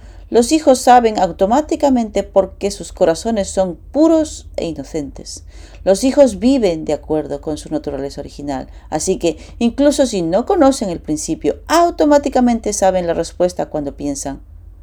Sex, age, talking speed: female, 40-59, 140 wpm